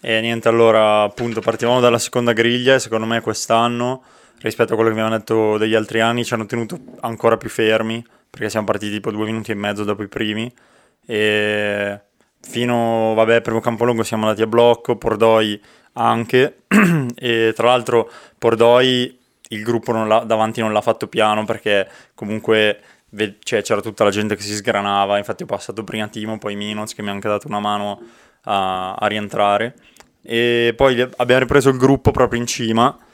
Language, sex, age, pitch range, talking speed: Italian, male, 20-39, 105-115 Hz, 175 wpm